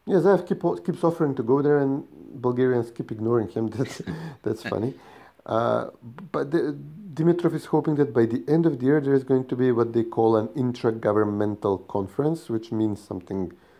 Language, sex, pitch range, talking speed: English, male, 100-135 Hz, 175 wpm